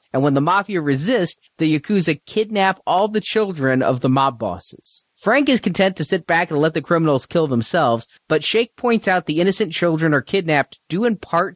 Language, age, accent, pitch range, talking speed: English, 30-49, American, 140-190 Hz, 205 wpm